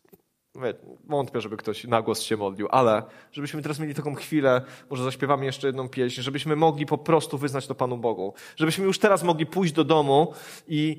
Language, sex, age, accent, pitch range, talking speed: Polish, male, 30-49, native, 135-165 Hz, 185 wpm